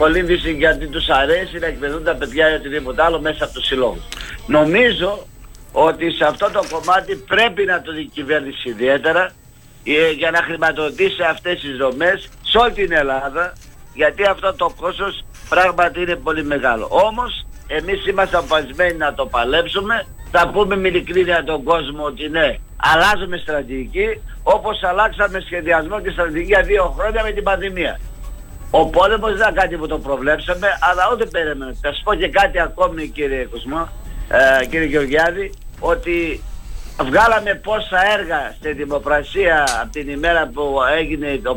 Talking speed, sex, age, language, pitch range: 150 wpm, male, 60-79, Greek, 150-200 Hz